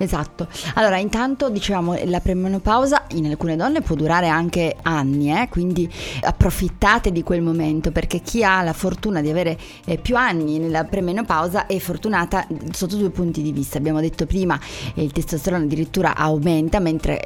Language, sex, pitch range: Italian, female, 160-195 Hz